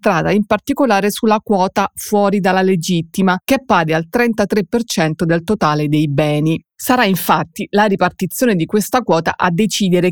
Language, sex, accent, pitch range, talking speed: Italian, female, native, 170-215 Hz, 150 wpm